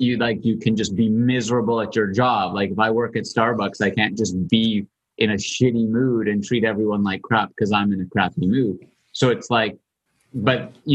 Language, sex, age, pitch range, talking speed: English, male, 30-49, 105-125 Hz, 220 wpm